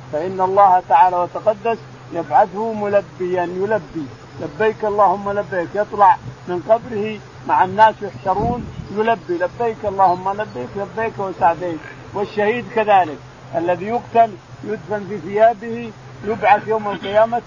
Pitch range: 180-220 Hz